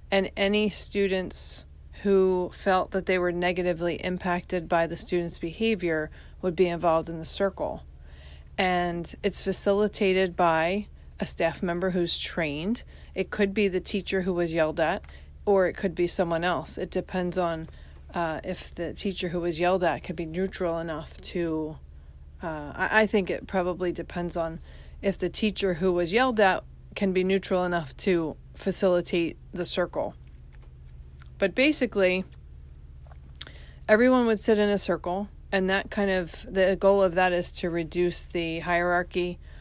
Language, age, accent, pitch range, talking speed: English, 40-59, American, 155-190 Hz, 155 wpm